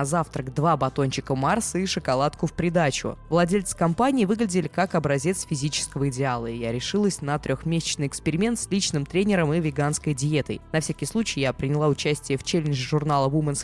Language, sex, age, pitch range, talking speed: Russian, female, 20-39, 145-185 Hz, 165 wpm